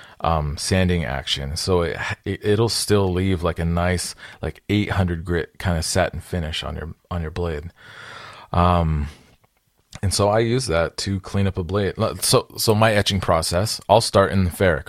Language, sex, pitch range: English, male, 85-100 Hz